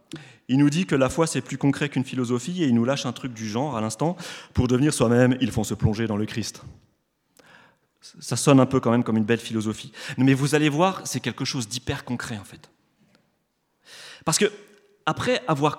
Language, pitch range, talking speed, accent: French, 125-200 Hz, 215 wpm, French